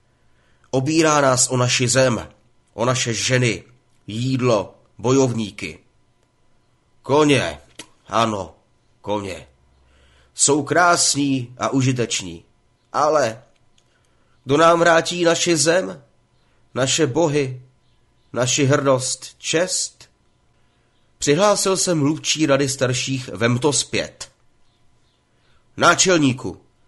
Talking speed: 85 wpm